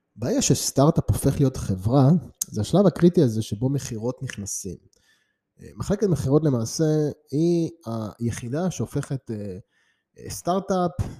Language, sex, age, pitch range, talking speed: Hebrew, male, 20-39, 105-150 Hz, 100 wpm